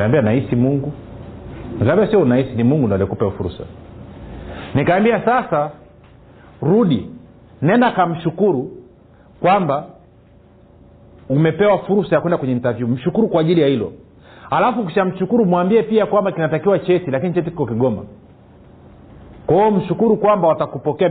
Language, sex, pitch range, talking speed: Swahili, male, 130-200 Hz, 130 wpm